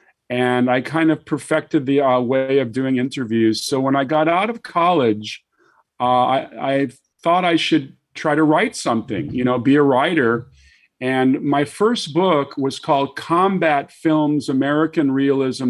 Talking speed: 165 wpm